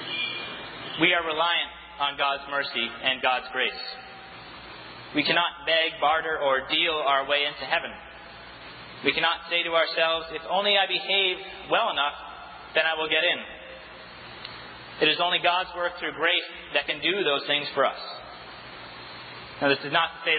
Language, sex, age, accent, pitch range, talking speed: English, male, 30-49, American, 145-170 Hz, 160 wpm